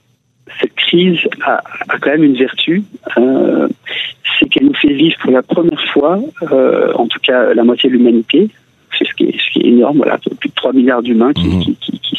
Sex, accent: male, French